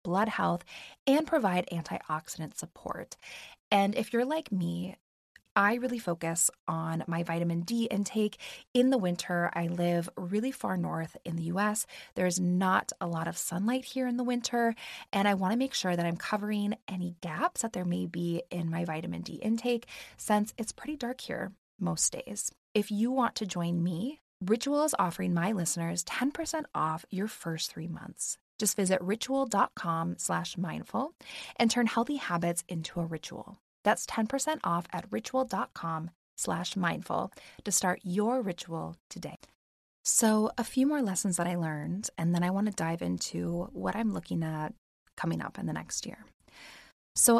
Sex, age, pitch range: female, 20-39, 170-230 Hz